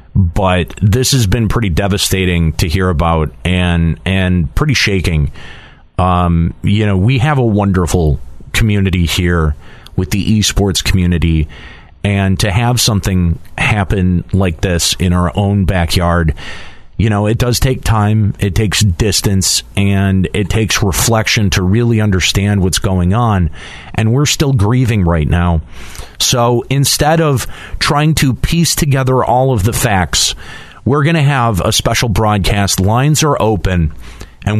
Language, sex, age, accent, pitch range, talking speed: English, male, 40-59, American, 90-120 Hz, 145 wpm